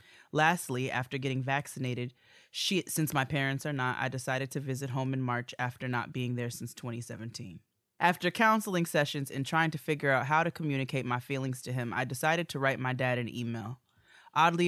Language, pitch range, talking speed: English, 125-145 Hz, 190 wpm